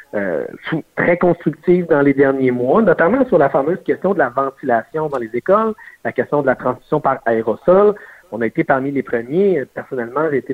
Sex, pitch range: male, 125-170 Hz